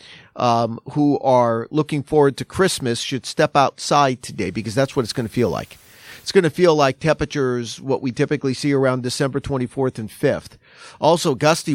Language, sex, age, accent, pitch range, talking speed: English, male, 40-59, American, 125-155 Hz, 185 wpm